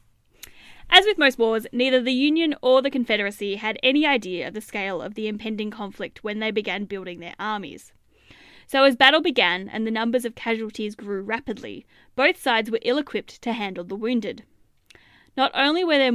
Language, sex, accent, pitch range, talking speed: English, female, Australian, 210-265 Hz, 180 wpm